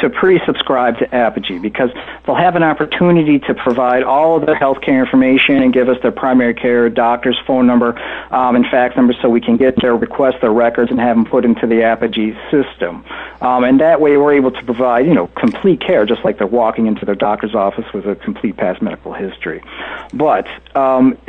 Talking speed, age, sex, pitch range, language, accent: 210 wpm, 50-69, male, 120-140 Hz, English, American